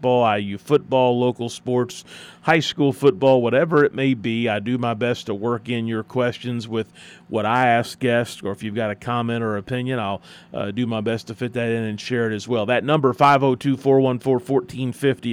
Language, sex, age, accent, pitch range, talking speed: English, male, 40-59, American, 120-145 Hz, 205 wpm